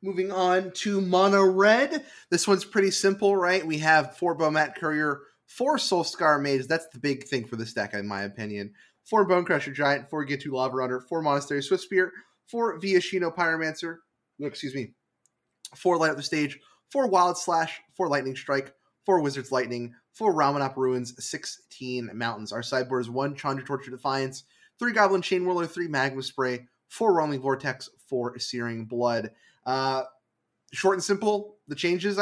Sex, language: male, English